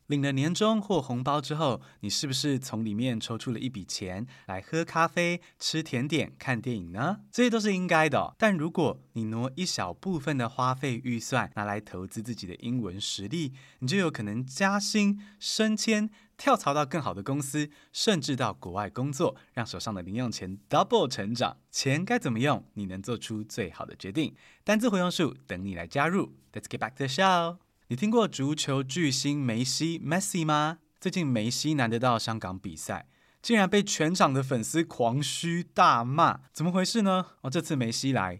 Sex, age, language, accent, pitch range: male, 20-39, Chinese, native, 115-170 Hz